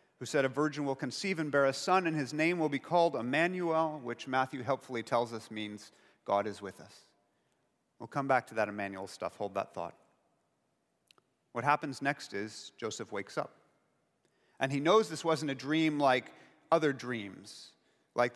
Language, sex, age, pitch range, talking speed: English, male, 40-59, 120-160 Hz, 180 wpm